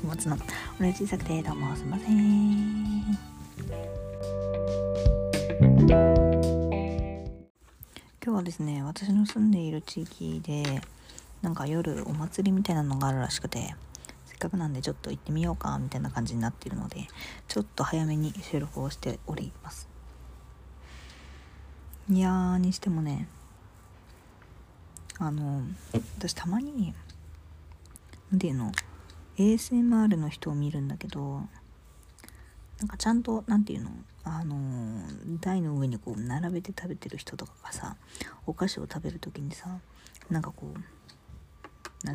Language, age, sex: Japanese, 40-59, female